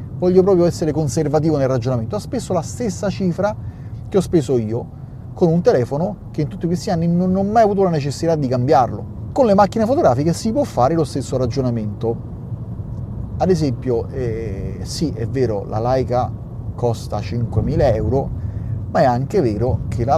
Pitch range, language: 115-155 Hz, Italian